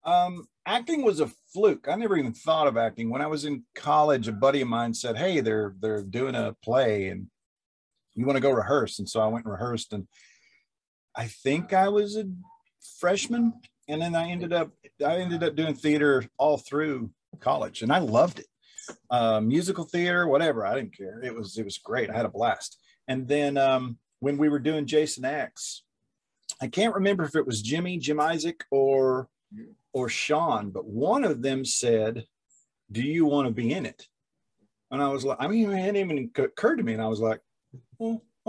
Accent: American